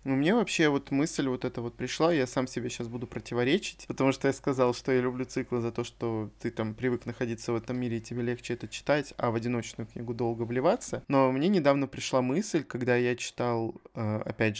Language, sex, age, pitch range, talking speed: Russian, male, 20-39, 120-145 Hz, 215 wpm